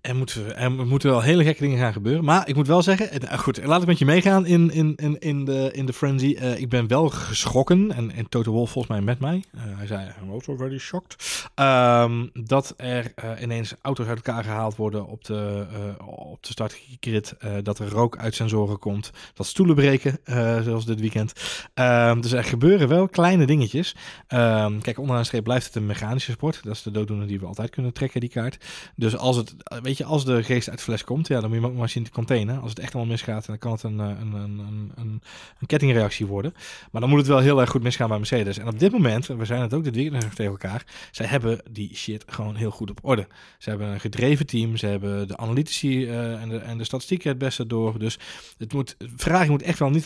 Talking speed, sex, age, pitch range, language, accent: 235 wpm, male, 20-39, 110-140 Hz, Dutch, Dutch